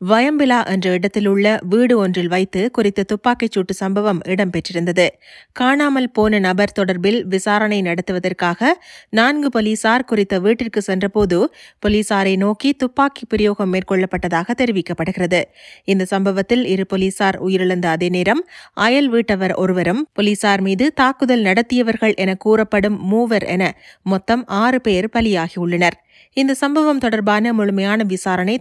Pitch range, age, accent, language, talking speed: 135-210 Hz, 30-49, native, Tamil, 115 wpm